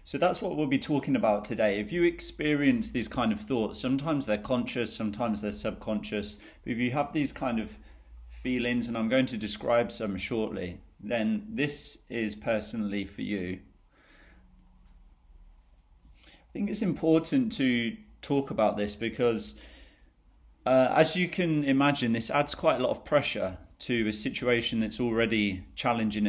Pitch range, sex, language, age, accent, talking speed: 90-130 Hz, male, English, 30-49, British, 155 wpm